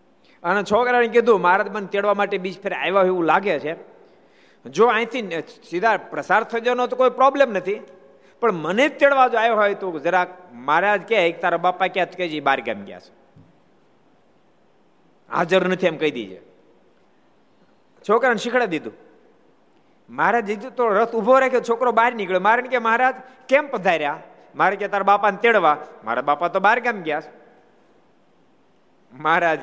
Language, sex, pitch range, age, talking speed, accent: Gujarati, male, 170-230 Hz, 50-69, 110 wpm, native